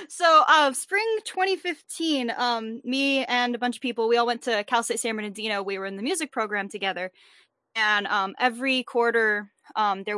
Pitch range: 205-250 Hz